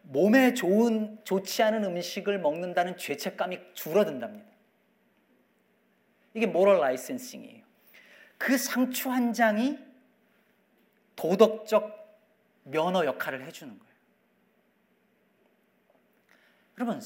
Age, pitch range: 40-59, 175-230 Hz